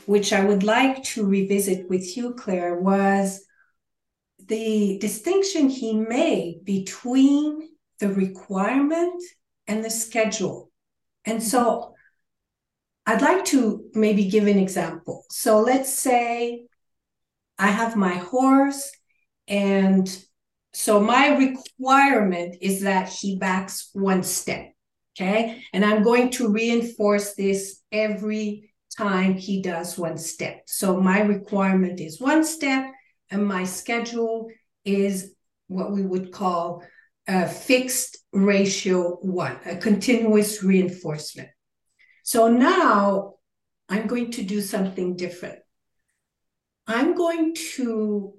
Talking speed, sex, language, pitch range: 115 wpm, female, English, 190-245 Hz